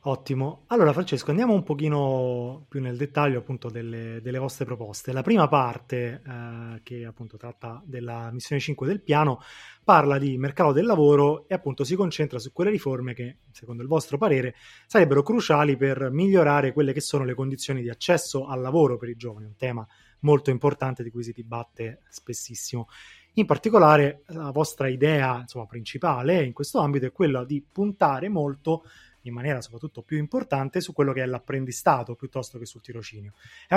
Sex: male